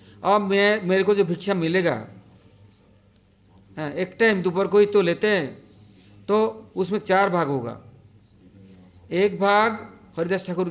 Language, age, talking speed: English, 60-79, 140 wpm